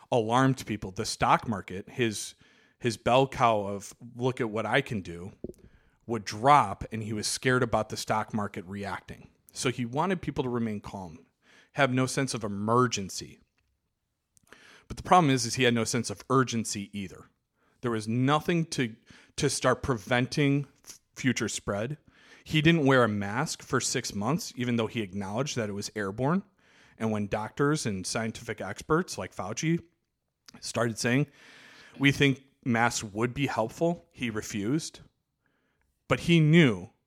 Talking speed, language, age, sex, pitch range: 160 wpm, English, 40-59, male, 105-135 Hz